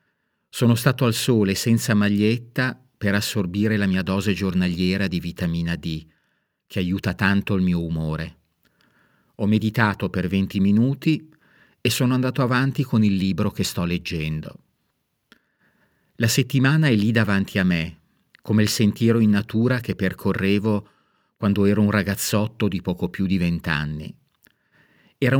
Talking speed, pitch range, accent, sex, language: 140 wpm, 95-120 Hz, native, male, Italian